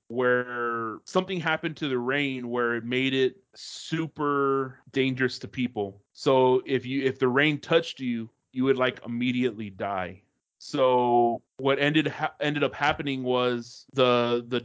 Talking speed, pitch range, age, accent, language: 150 wpm, 115-135 Hz, 30-49, American, English